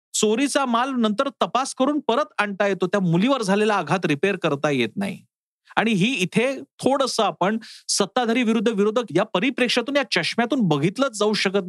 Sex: male